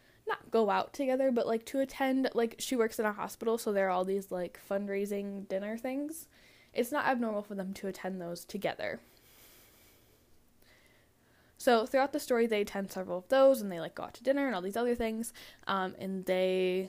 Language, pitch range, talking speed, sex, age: English, 195-250 Hz, 200 wpm, female, 10-29